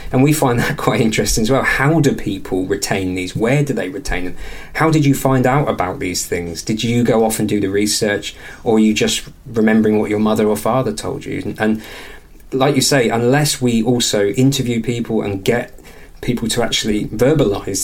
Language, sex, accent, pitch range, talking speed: English, male, British, 100-130 Hz, 210 wpm